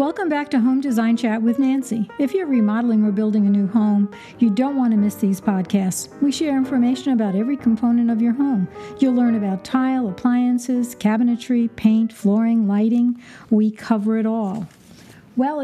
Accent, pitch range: American, 215-255 Hz